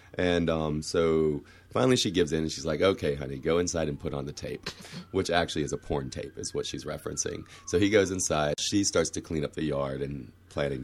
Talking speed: 235 wpm